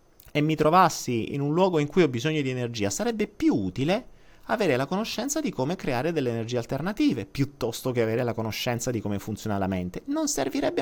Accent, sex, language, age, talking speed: native, male, Italian, 30-49, 200 wpm